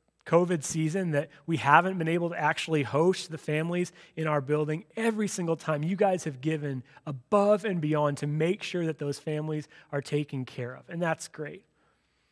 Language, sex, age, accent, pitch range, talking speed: English, male, 30-49, American, 150-180 Hz, 185 wpm